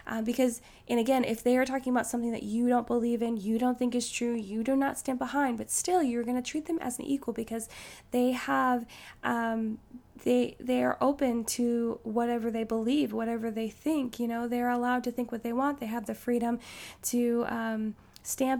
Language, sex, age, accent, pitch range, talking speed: English, female, 10-29, American, 225-260 Hz, 215 wpm